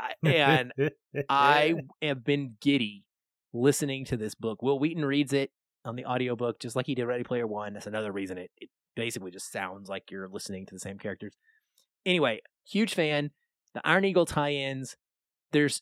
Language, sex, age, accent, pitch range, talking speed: English, male, 30-49, American, 120-155 Hz, 175 wpm